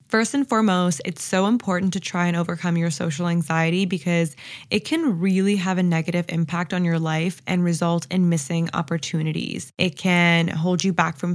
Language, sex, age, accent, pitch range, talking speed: English, female, 10-29, American, 170-205 Hz, 185 wpm